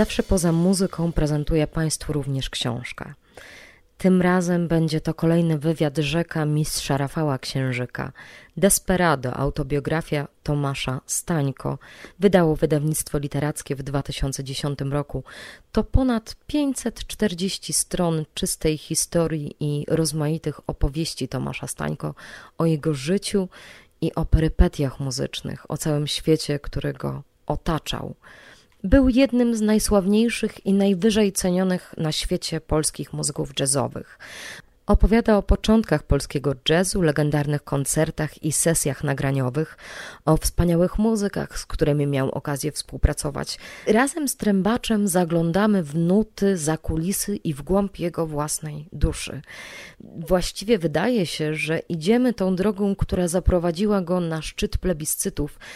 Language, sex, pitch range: Polish, female, 150-190 Hz